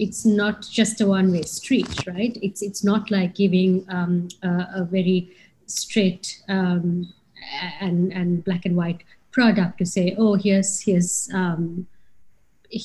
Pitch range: 180-210 Hz